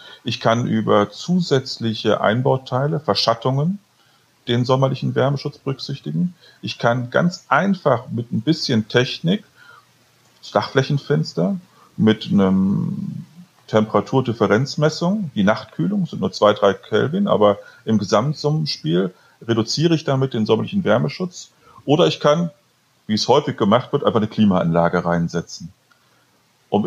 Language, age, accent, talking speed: German, 40-59, German, 115 wpm